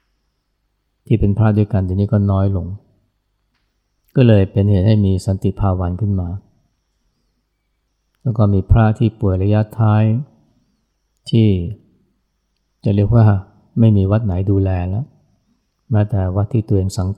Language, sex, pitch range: Thai, male, 95-110 Hz